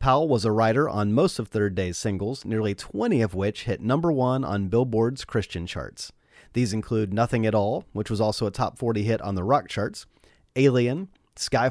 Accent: American